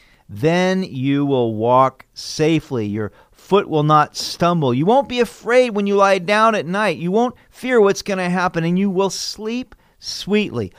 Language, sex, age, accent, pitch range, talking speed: English, male, 50-69, American, 130-200 Hz, 180 wpm